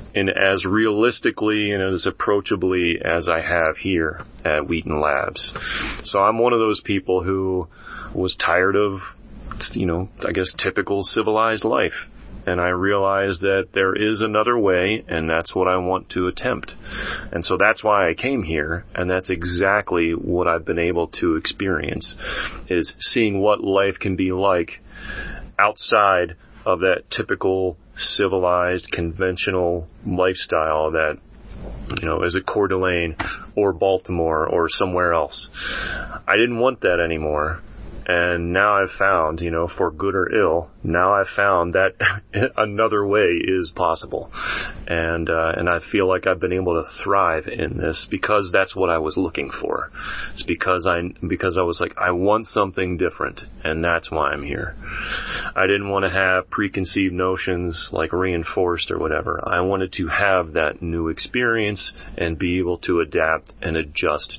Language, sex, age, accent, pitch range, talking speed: English, male, 30-49, American, 85-100 Hz, 160 wpm